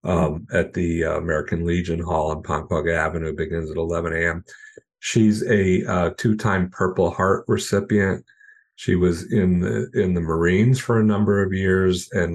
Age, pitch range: 50-69, 85-95 Hz